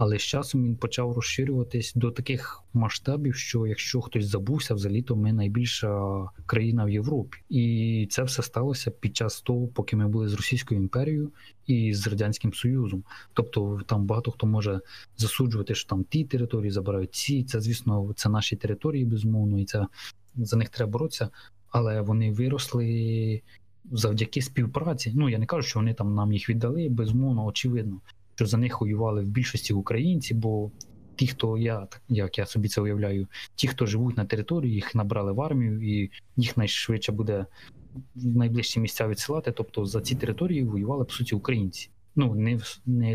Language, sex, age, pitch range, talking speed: Ukrainian, male, 20-39, 105-125 Hz, 170 wpm